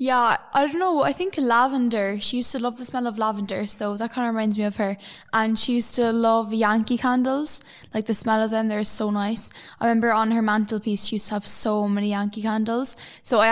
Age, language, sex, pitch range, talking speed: 10-29, English, female, 210-240 Hz, 235 wpm